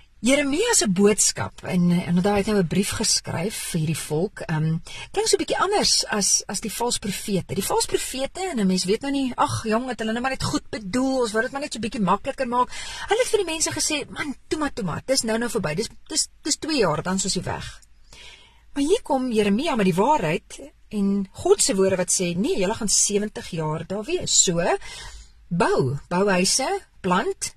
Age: 40-59